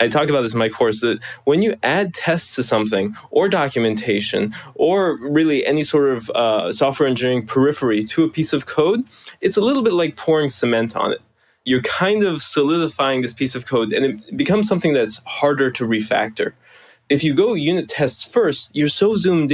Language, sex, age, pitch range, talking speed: English, male, 20-39, 120-155 Hz, 195 wpm